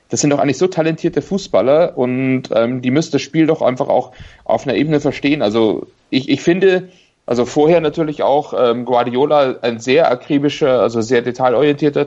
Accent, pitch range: German, 120-145 Hz